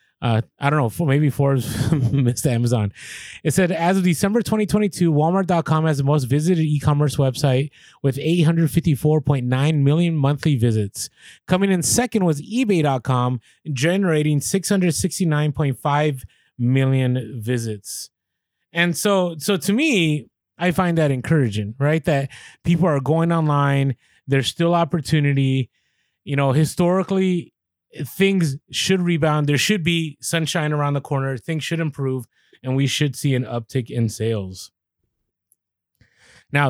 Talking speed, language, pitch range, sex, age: 130 wpm, English, 130-170 Hz, male, 20-39